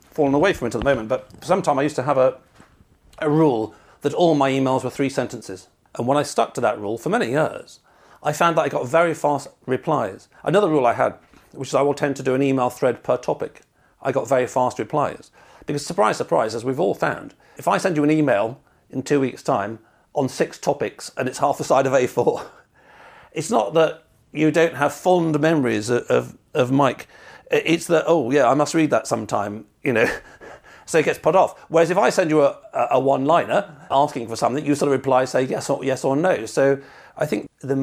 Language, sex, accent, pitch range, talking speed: English, male, British, 130-155 Hz, 230 wpm